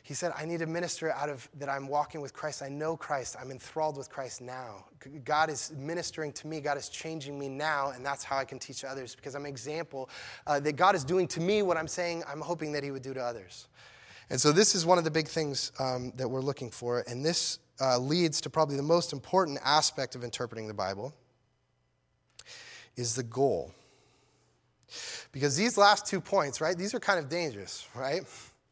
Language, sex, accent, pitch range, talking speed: English, male, American, 135-165 Hz, 215 wpm